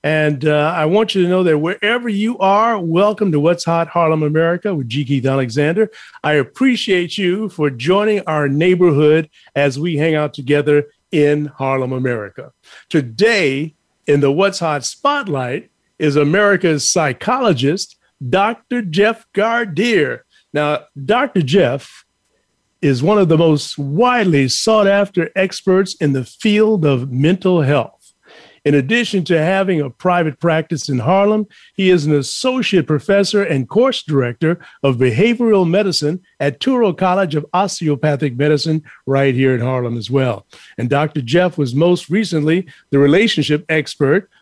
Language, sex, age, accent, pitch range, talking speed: English, male, 50-69, American, 145-200 Hz, 145 wpm